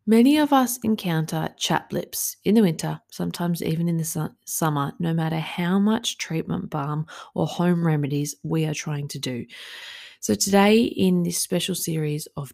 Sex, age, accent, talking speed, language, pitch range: female, 30-49, Australian, 170 wpm, English, 145-185 Hz